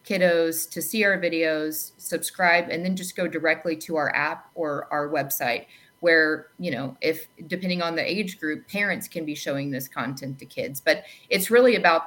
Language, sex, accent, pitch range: English, female, American, 155-190 Hz